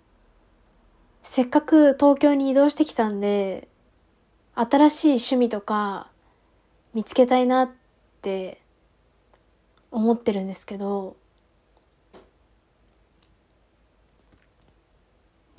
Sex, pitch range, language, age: female, 205-275 Hz, Japanese, 20-39